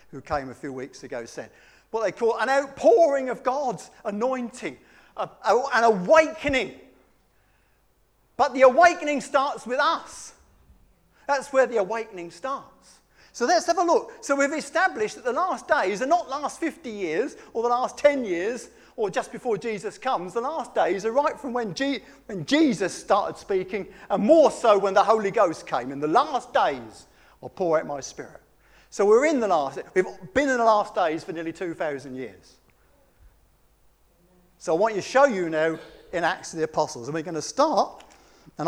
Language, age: English, 50-69